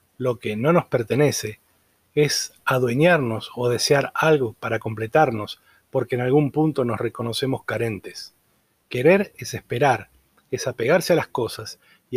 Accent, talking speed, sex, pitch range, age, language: Argentinian, 140 wpm, male, 125-155 Hz, 30-49, Spanish